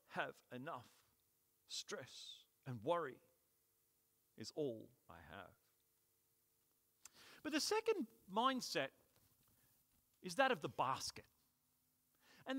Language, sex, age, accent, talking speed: English, male, 40-59, British, 90 wpm